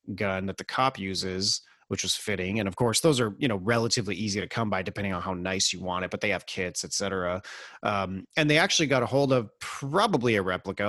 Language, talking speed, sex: English, 235 wpm, male